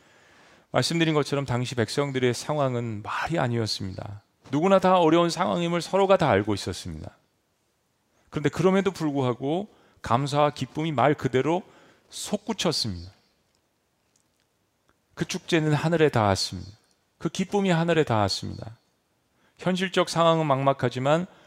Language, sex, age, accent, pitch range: Korean, male, 40-59, native, 120-185 Hz